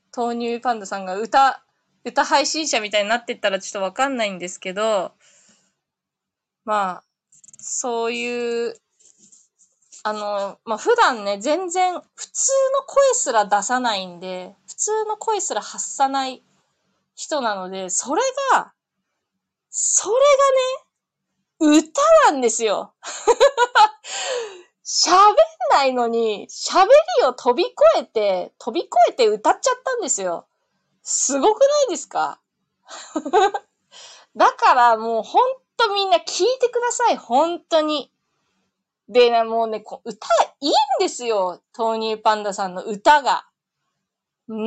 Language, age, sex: Japanese, 20-39, female